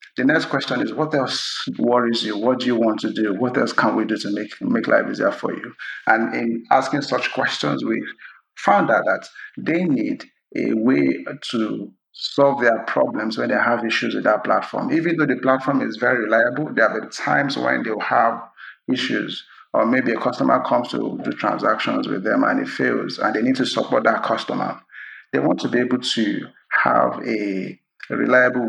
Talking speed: 195 wpm